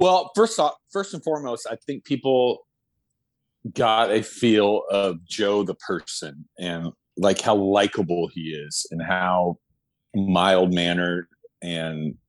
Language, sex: English, male